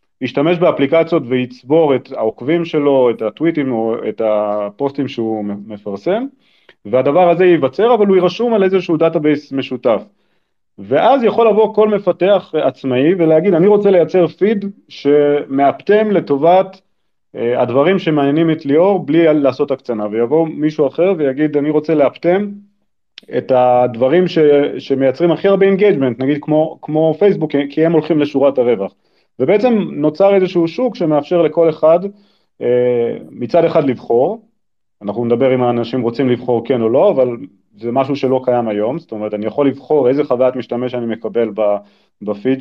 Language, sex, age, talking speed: Hebrew, male, 30-49, 145 wpm